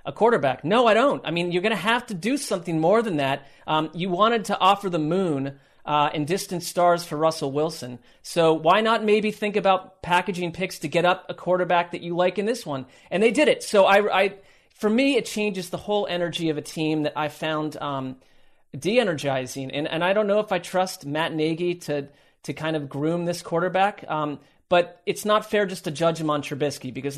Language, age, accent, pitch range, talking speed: English, 30-49, American, 150-190 Hz, 220 wpm